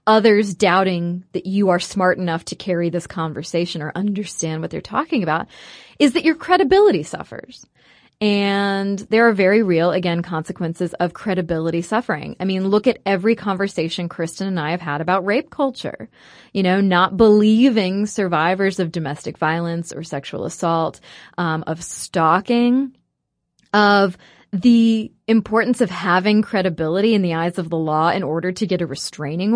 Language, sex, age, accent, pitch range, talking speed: English, female, 30-49, American, 170-220 Hz, 160 wpm